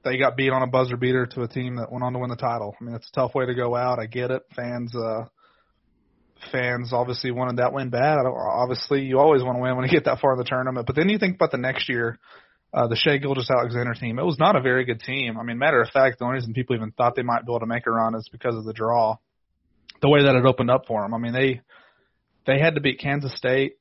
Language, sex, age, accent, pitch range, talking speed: English, male, 30-49, American, 120-135 Hz, 290 wpm